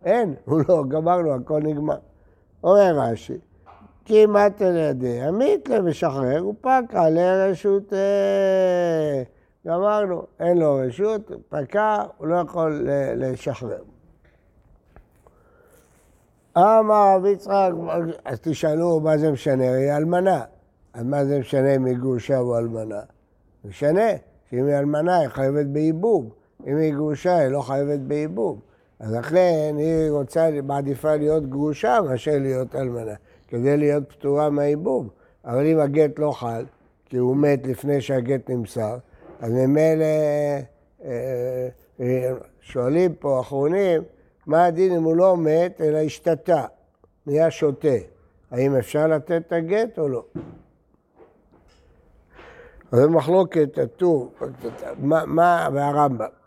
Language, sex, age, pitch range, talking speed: Hebrew, male, 60-79, 130-175 Hz, 115 wpm